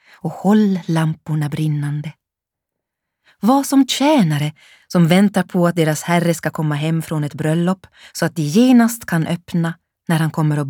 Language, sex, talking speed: Swedish, female, 165 wpm